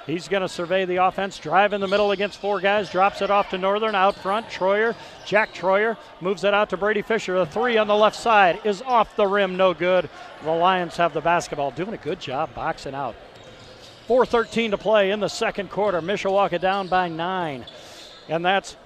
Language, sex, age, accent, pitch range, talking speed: English, male, 40-59, American, 175-215 Hz, 205 wpm